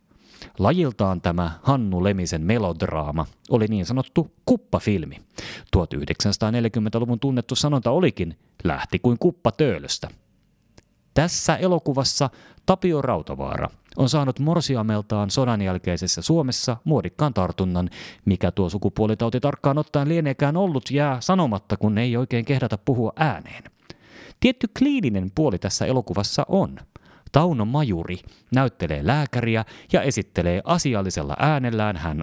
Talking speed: 110 wpm